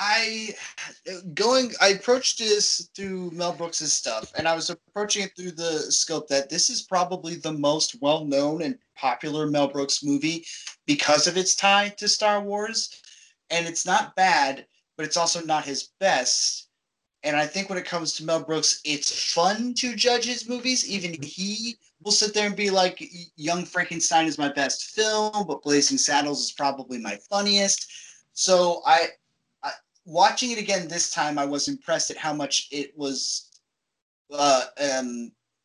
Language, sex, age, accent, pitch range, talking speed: English, male, 30-49, American, 145-195 Hz, 165 wpm